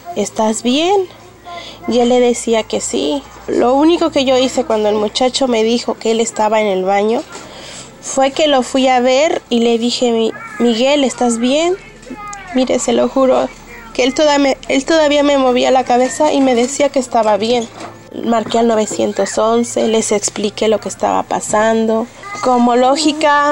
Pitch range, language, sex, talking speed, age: 215-270 Hz, Spanish, female, 170 wpm, 30-49